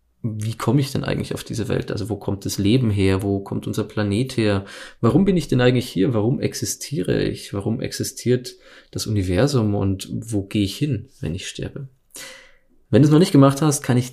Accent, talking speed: German, 210 wpm